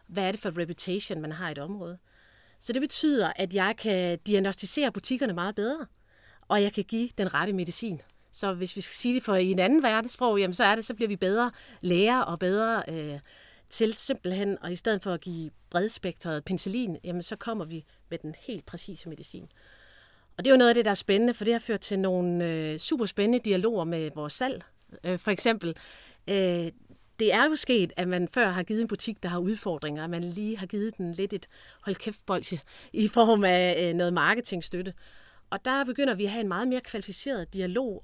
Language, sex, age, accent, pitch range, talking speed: Danish, female, 40-59, native, 175-220 Hz, 215 wpm